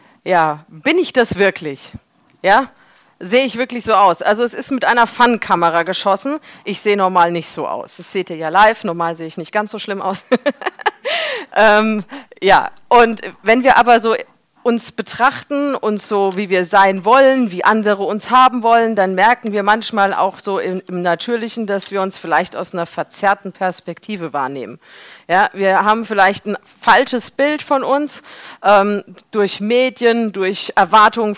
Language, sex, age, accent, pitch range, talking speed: German, female, 40-59, German, 190-230 Hz, 170 wpm